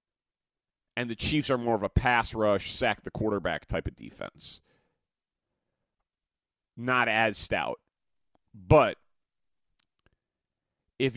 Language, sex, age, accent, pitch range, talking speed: English, male, 30-49, American, 105-150 Hz, 105 wpm